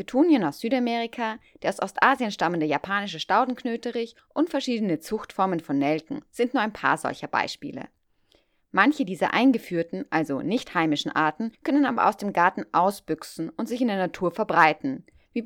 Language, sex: German, female